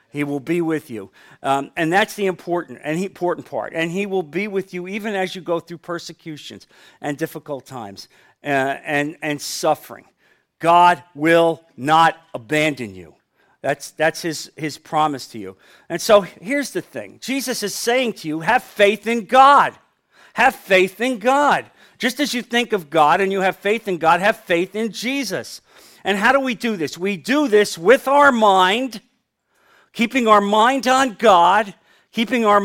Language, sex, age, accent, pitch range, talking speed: English, male, 50-69, American, 160-230 Hz, 180 wpm